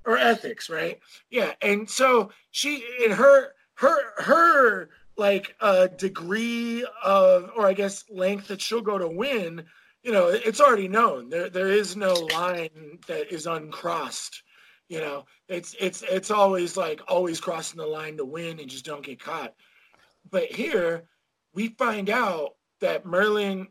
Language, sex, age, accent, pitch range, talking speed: English, male, 20-39, American, 160-215 Hz, 160 wpm